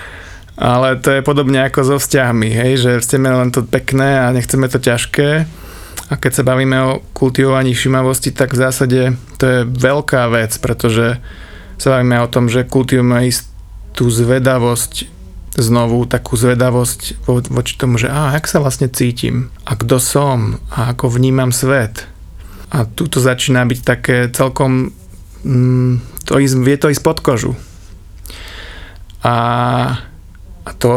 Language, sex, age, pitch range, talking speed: Slovak, male, 30-49, 120-135 Hz, 145 wpm